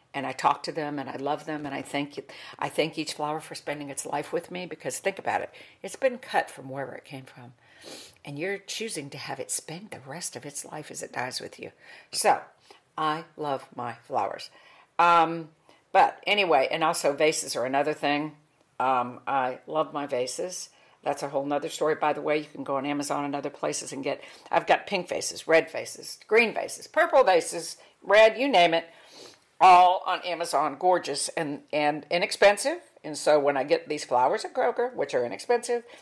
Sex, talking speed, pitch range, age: female, 200 wpm, 145-185 Hz, 60-79